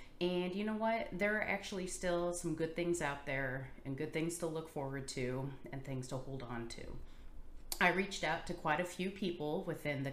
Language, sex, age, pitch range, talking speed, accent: English, female, 30-49, 140-195 Hz, 215 wpm, American